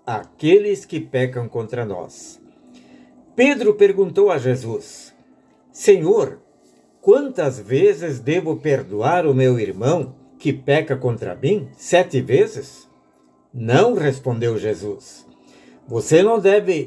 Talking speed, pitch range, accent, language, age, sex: 105 wpm, 130-195 Hz, Brazilian, Portuguese, 60-79, male